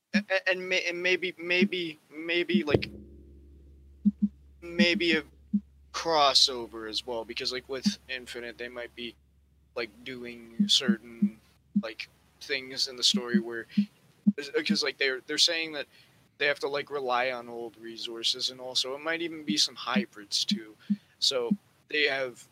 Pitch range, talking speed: 120-160 Hz, 140 wpm